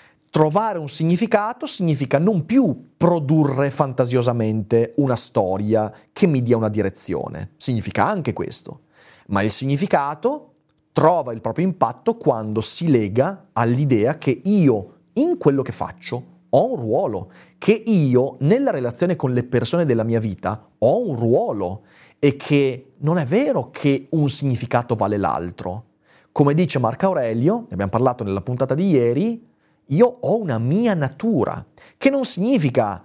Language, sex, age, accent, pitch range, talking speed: Italian, male, 30-49, native, 120-180 Hz, 145 wpm